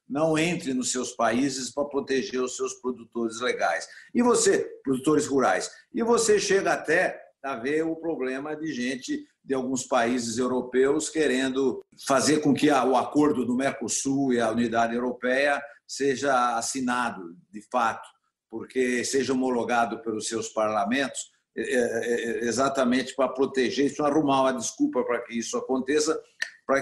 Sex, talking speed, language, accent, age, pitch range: male, 145 wpm, Portuguese, Brazilian, 60-79, 125-160 Hz